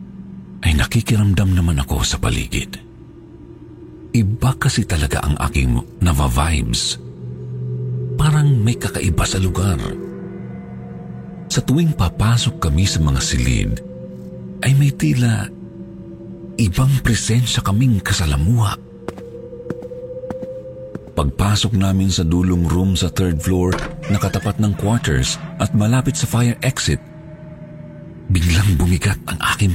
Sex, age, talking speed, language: male, 50-69, 105 wpm, Filipino